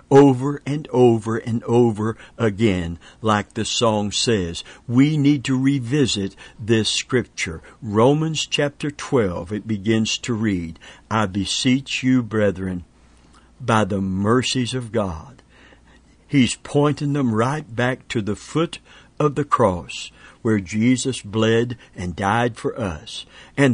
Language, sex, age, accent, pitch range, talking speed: English, male, 60-79, American, 105-140 Hz, 130 wpm